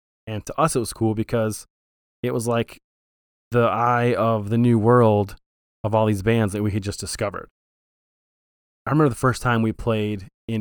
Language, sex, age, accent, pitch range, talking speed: English, male, 20-39, American, 100-125 Hz, 185 wpm